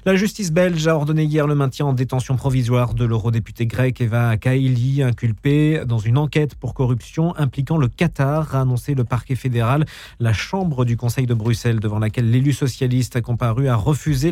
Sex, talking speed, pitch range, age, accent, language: male, 185 wpm, 120-160 Hz, 40-59, French, French